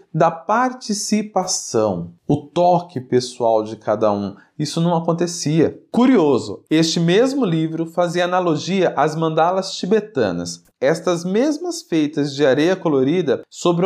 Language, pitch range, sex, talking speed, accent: Portuguese, 150-220 Hz, male, 115 wpm, Brazilian